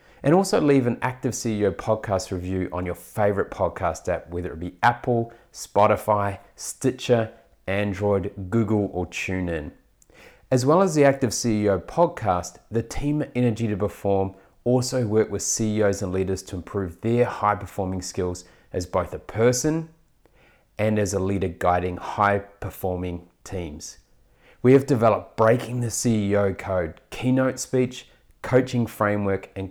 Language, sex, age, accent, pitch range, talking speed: English, male, 30-49, Australian, 95-125 Hz, 140 wpm